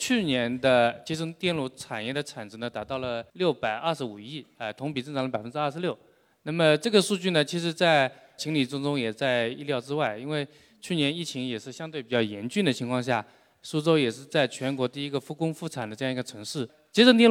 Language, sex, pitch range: Chinese, male, 125-165 Hz